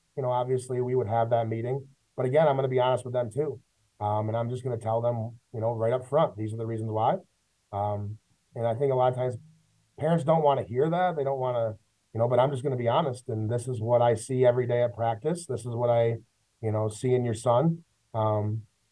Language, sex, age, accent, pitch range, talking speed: English, male, 30-49, American, 115-135 Hz, 265 wpm